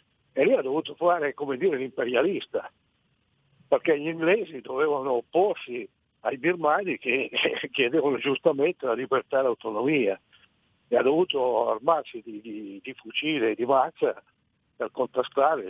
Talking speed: 135 wpm